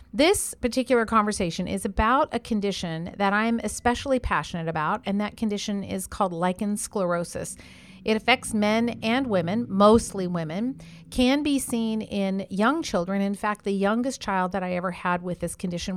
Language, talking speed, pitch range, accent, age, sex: English, 165 wpm, 190-245 Hz, American, 40-59, female